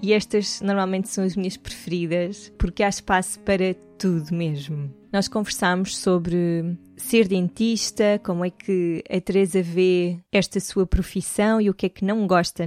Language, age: Portuguese, 20-39